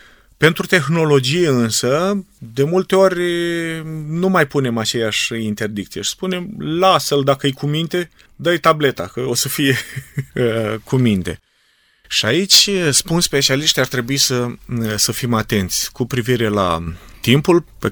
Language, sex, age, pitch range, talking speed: Romanian, male, 30-49, 105-135 Hz, 135 wpm